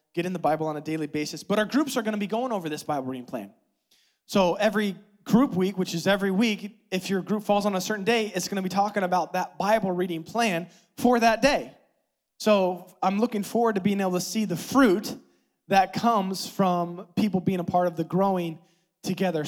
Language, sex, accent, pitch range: English, male, American, 180-220 Hz